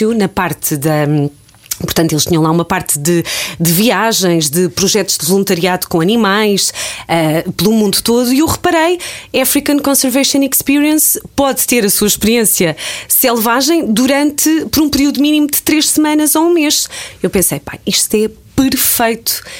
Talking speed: 155 wpm